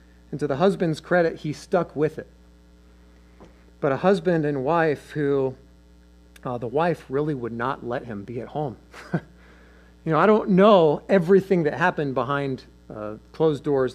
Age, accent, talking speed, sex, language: 40-59, American, 165 wpm, male, English